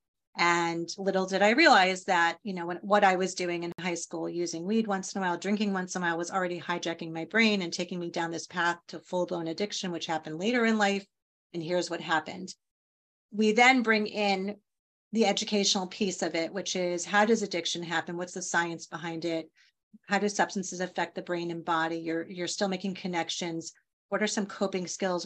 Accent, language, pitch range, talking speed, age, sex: American, English, 170-205 Hz, 205 wpm, 30-49, female